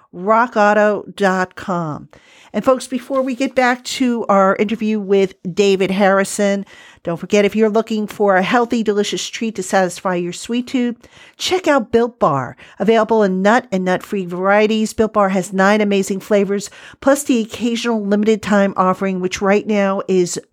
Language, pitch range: English, 195-235 Hz